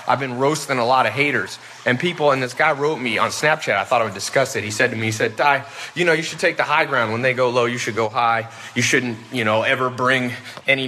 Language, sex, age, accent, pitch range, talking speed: English, male, 30-49, American, 125-175 Hz, 285 wpm